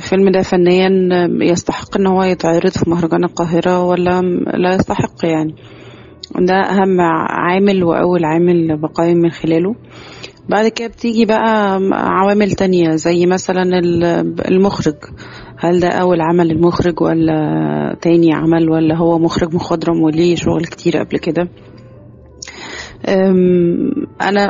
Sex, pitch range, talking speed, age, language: female, 165-185 Hz, 120 wpm, 30-49, Arabic